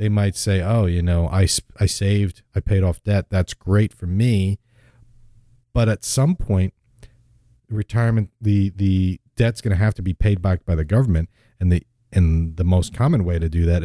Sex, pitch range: male, 90-120 Hz